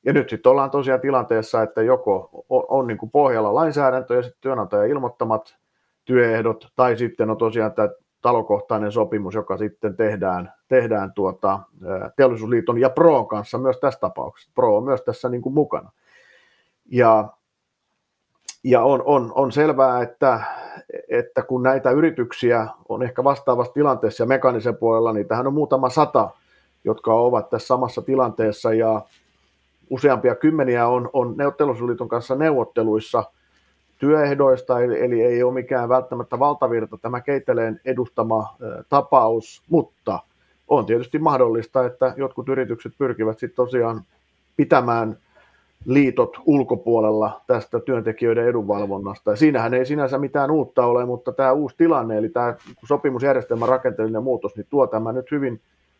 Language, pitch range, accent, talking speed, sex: Finnish, 110-135 Hz, native, 140 wpm, male